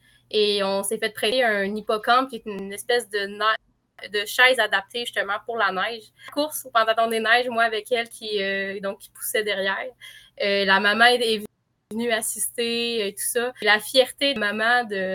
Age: 20-39